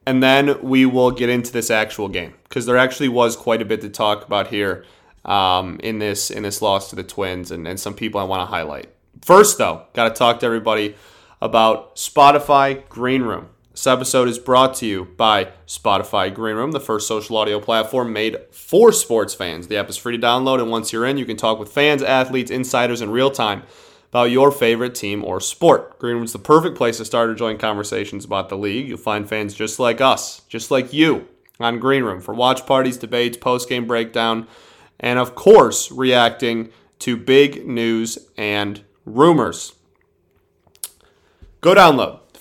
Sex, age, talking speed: male, 30-49, 190 wpm